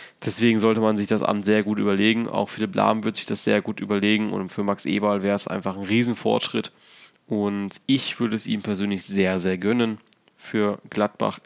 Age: 20-39